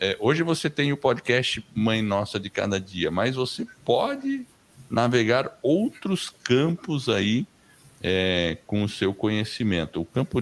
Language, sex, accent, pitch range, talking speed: Portuguese, male, Brazilian, 95-130 Hz, 130 wpm